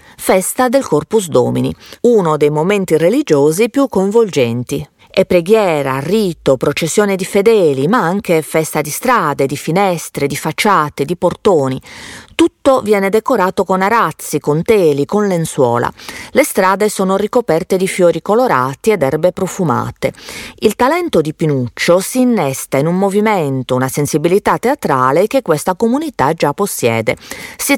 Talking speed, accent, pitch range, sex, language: 140 wpm, native, 145-215 Hz, female, Italian